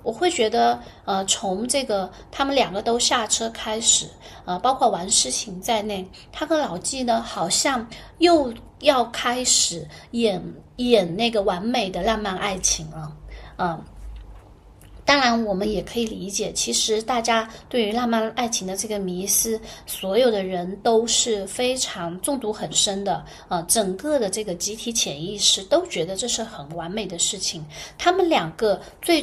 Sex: female